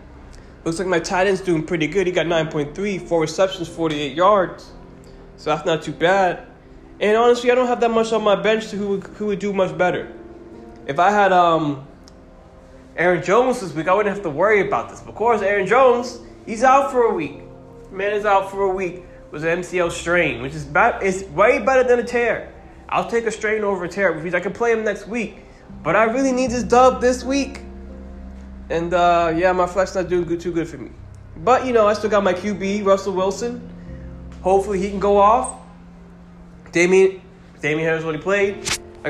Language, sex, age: English, male, 20-39